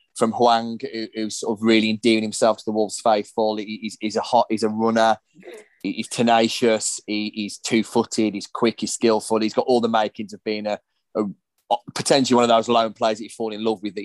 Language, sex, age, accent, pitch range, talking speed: English, male, 20-39, British, 110-125 Hz, 210 wpm